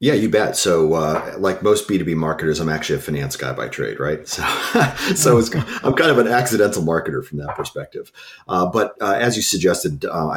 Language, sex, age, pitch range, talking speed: English, male, 40-59, 75-85 Hz, 205 wpm